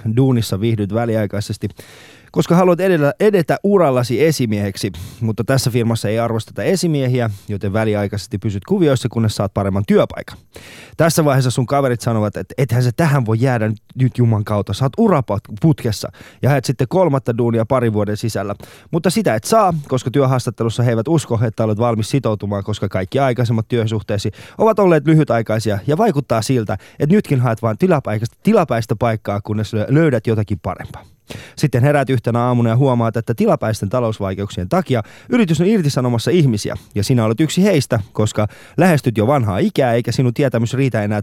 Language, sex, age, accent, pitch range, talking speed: Finnish, male, 20-39, native, 110-145 Hz, 160 wpm